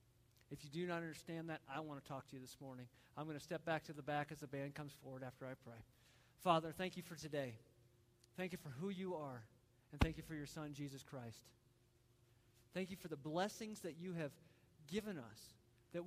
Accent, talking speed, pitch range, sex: American, 225 wpm, 120-190 Hz, male